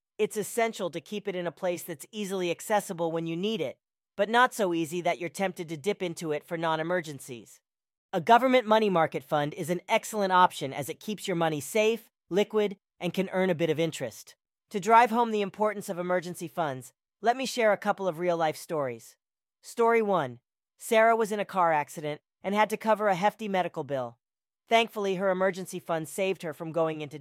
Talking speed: 205 wpm